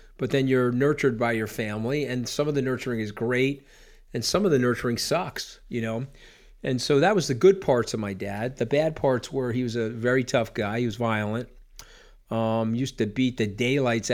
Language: English